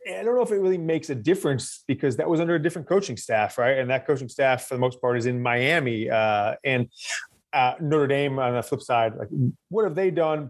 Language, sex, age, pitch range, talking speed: English, male, 30-49, 125-155 Hz, 245 wpm